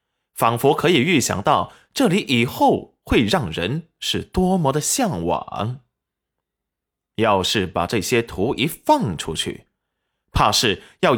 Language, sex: Chinese, male